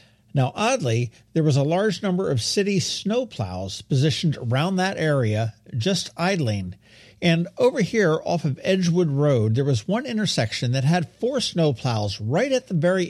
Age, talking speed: 50-69, 160 wpm